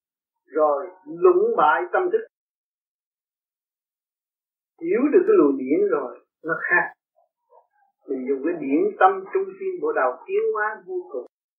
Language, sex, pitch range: Vietnamese, male, 230-365 Hz